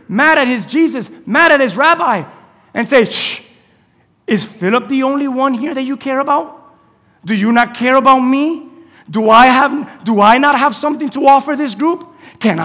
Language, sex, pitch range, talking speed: English, male, 230-310 Hz, 175 wpm